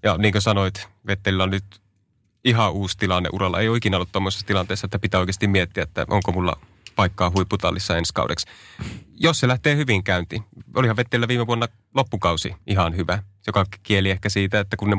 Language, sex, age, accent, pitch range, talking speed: Finnish, male, 30-49, native, 95-110 Hz, 185 wpm